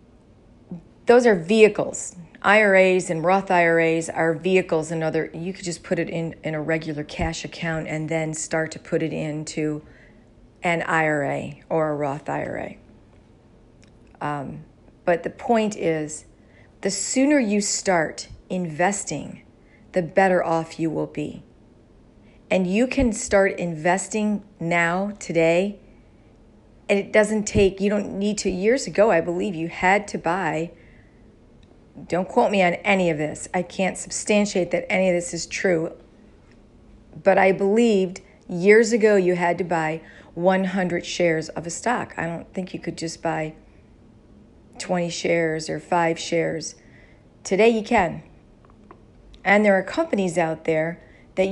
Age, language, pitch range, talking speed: 40-59, English, 155-195 Hz, 145 wpm